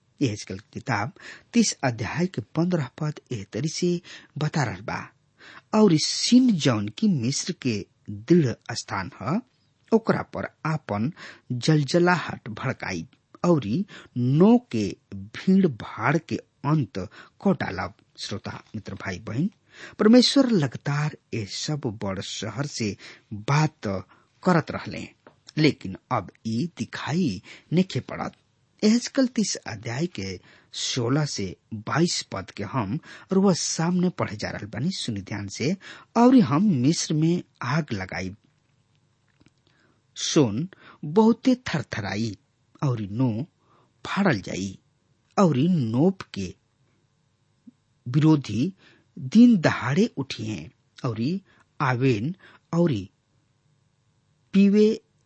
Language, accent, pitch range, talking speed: English, Indian, 115-175 Hz, 115 wpm